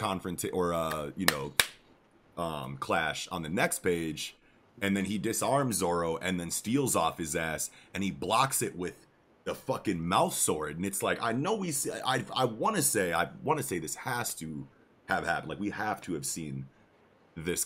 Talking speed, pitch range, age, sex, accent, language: 200 wpm, 80-115 Hz, 30-49, male, American, English